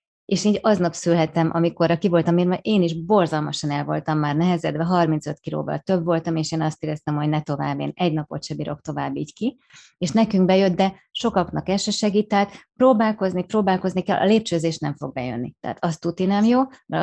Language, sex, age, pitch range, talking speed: Hungarian, female, 30-49, 155-195 Hz, 195 wpm